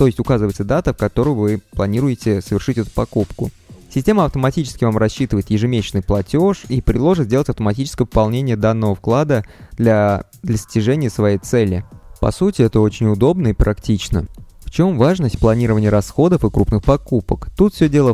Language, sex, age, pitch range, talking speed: Russian, male, 20-39, 105-140 Hz, 150 wpm